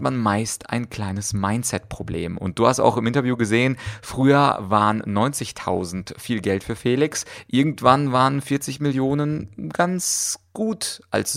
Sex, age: male, 30-49